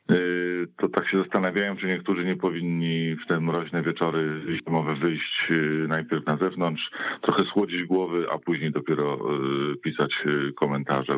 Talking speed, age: 135 wpm, 40-59